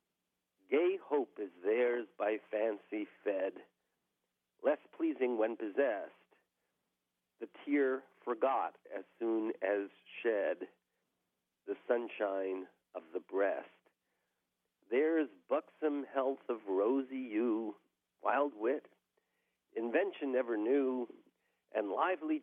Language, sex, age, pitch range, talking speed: English, male, 50-69, 105-165 Hz, 95 wpm